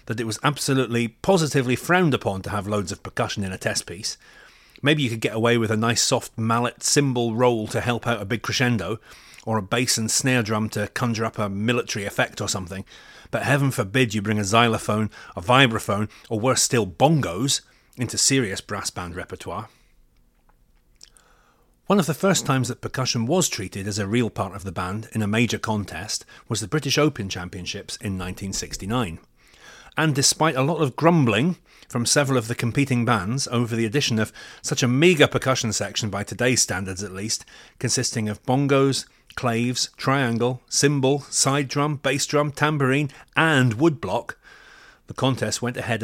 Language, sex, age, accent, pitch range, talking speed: English, male, 30-49, British, 105-135 Hz, 175 wpm